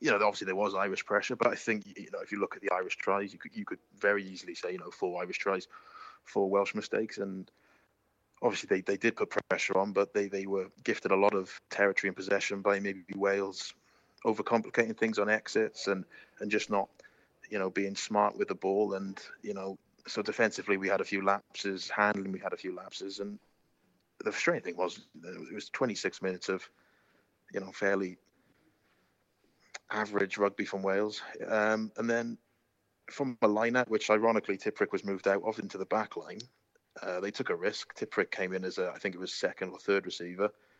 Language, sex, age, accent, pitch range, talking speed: English, male, 20-39, British, 100-110 Hz, 205 wpm